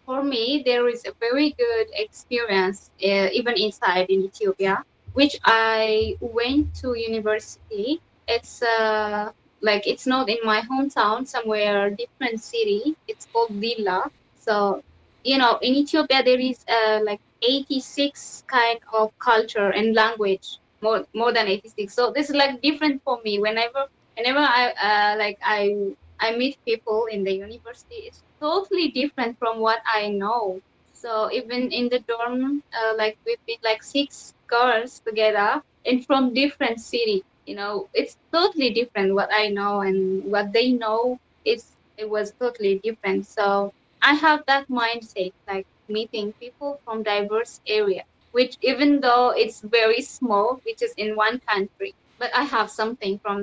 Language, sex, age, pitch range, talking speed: English, female, 20-39, 210-255 Hz, 155 wpm